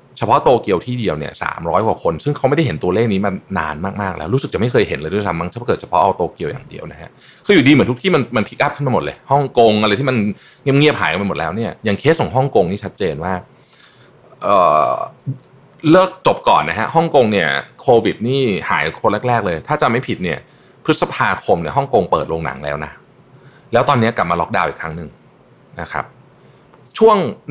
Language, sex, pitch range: Thai, male, 90-130 Hz